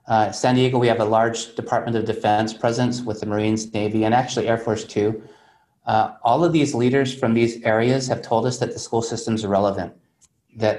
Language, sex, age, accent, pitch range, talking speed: English, male, 30-49, American, 105-125 Hz, 210 wpm